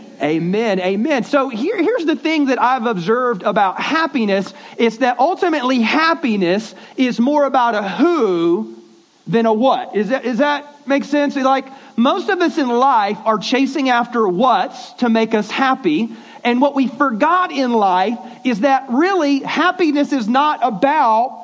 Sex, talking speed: male, 160 wpm